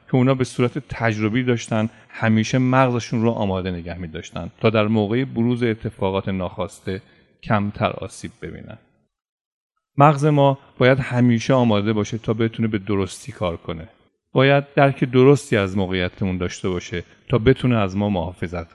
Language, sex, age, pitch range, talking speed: Persian, male, 40-59, 100-120 Hz, 150 wpm